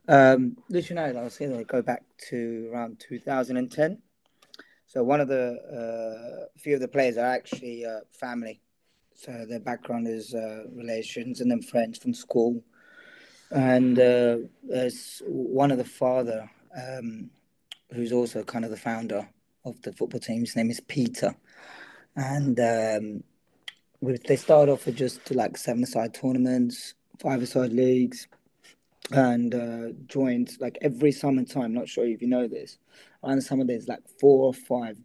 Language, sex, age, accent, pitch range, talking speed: English, male, 20-39, British, 120-140 Hz, 160 wpm